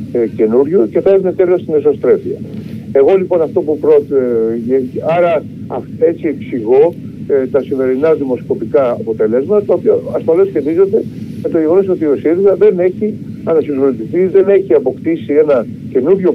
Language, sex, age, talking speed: Greek, male, 60-79, 135 wpm